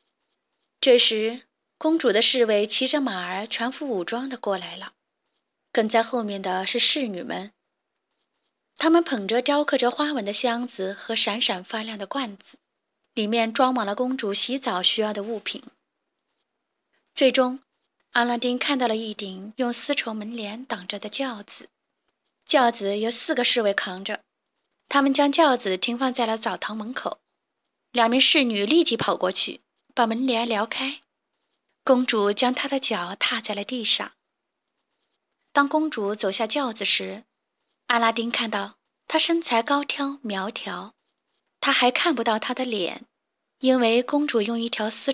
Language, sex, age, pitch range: Chinese, female, 20-39, 210-260 Hz